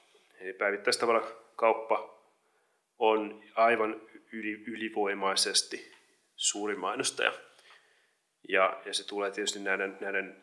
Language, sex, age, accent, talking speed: Finnish, male, 30-49, native, 80 wpm